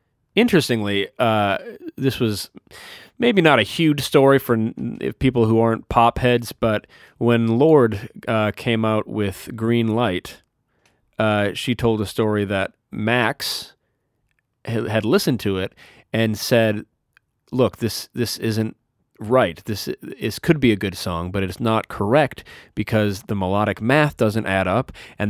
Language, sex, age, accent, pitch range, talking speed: English, male, 30-49, American, 100-120 Hz, 145 wpm